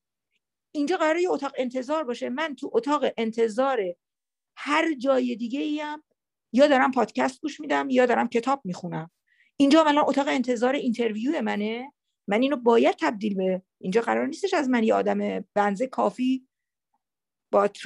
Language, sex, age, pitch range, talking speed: Persian, female, 50-69, 195-275 Hz, 150 wpm